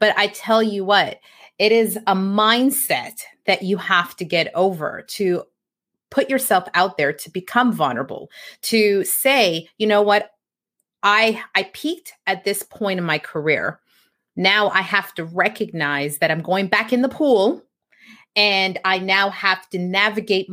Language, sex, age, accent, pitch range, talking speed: English, female, 30-49, American, 180-220 Hz, 160 wpm